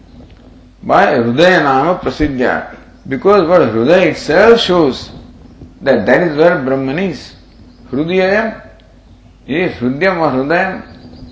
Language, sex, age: English, male, 50-69